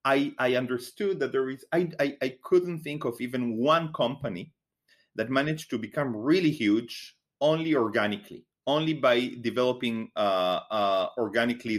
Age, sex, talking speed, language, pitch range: 30-49, male, 150 wpm, English, 110-135 Hz